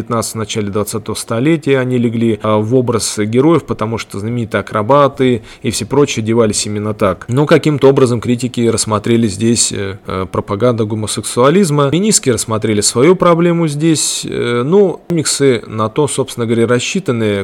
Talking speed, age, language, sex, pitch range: 135 wpm, 20-39, Russian, male, 105-130 Hz